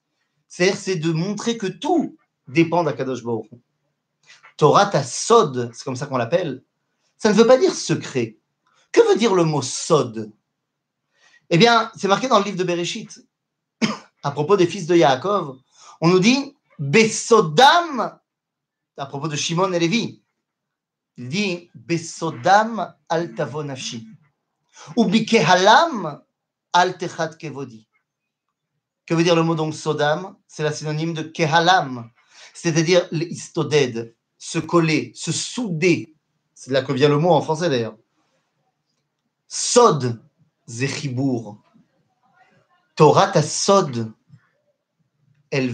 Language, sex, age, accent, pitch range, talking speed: French, male, 40-59, French, 140-185 Hz, 125 wpm